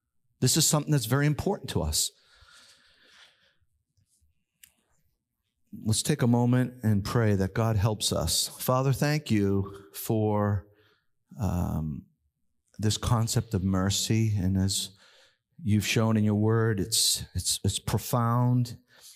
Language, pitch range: English, 100-135 Hz